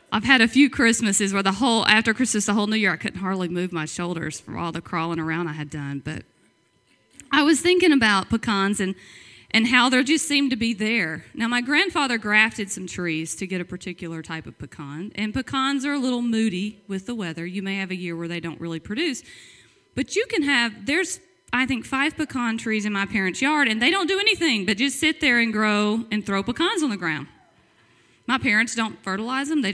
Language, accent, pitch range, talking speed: English, American, 190-270 Hz, 225 wpm